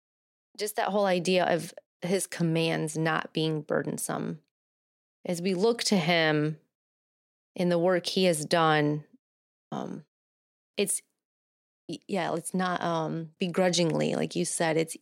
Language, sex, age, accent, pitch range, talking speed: English, female, 30-49, American, 155-180 Hz, 130 wpm